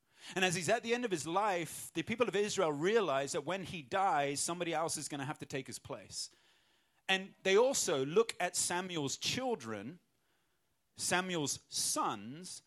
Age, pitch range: 30-49, 145-205 Hz